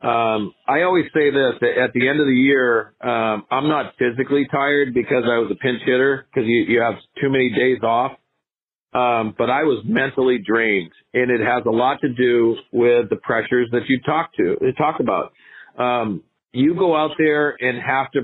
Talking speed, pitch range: 200 wpm, 125-155 Hz